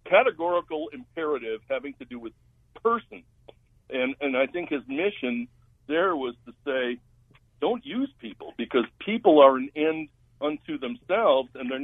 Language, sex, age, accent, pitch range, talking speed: English, male, 60-79, American, 120-145 Hz, 145 wpm